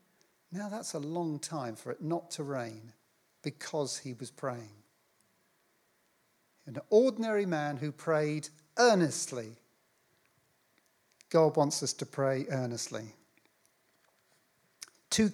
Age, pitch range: 50-69, 145-185 Hz